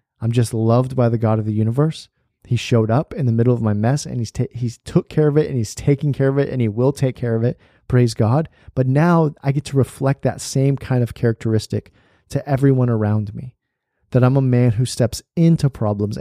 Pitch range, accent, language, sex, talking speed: 110-130 Hz, American, English, male, 235 wpm